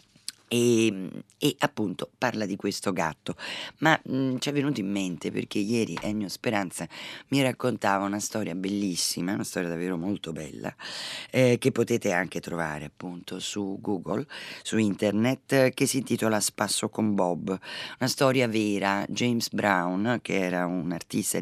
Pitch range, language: 90-120 Hz, Italian